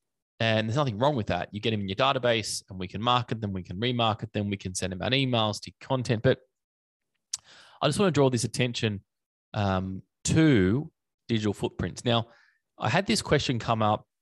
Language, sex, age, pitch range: English, male, 20-39, 95-120 Hz